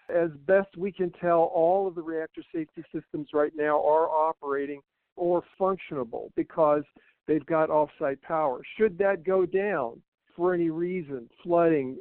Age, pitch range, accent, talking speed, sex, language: 60-79, 155-190 Hz, American, 150 wpm, male, English